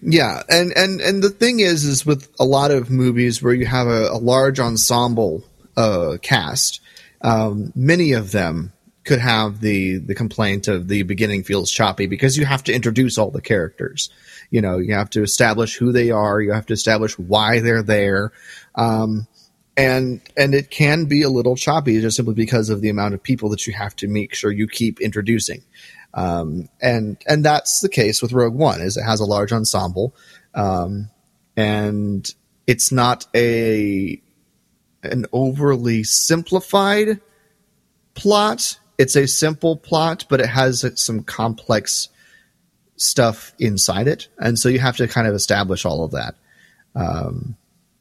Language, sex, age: English, male, 30-49